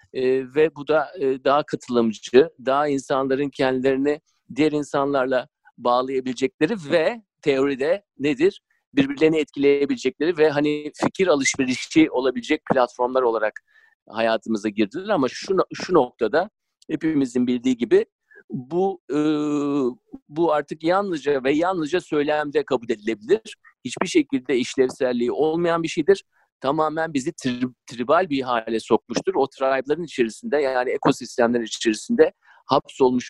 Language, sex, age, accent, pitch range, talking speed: Turkish, male, 50-69, native, 135-180 Hz, 115 wpm